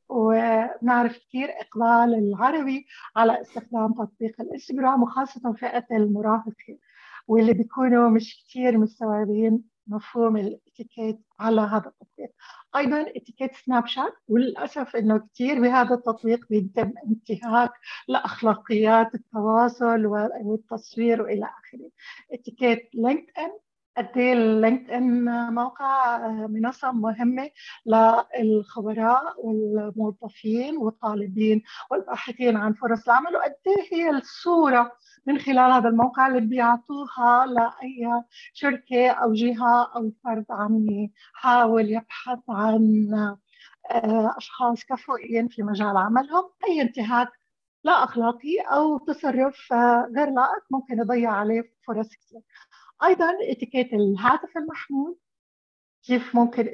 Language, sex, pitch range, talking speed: Arabic, female, 225-270 Hz, 100 wpm